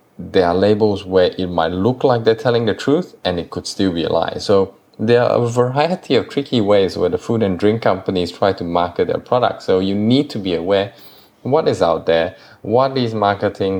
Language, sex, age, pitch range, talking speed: English, male, 20-39, 90-120 Hz, 220 wpm